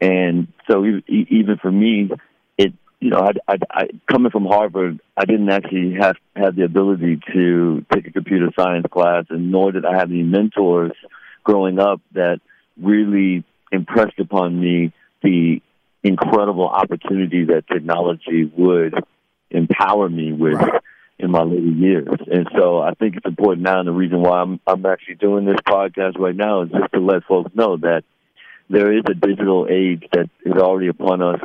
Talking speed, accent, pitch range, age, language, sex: 170 wpm, American, 85-100 Hz, 60-79, English, male